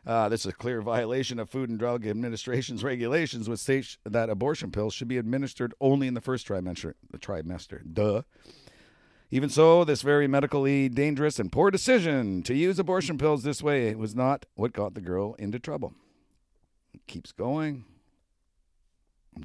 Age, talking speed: 50-69, 165 wpm